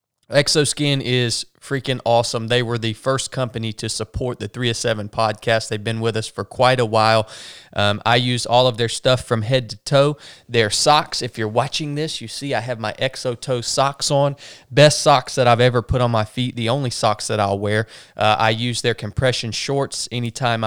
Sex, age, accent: male, 20-39, American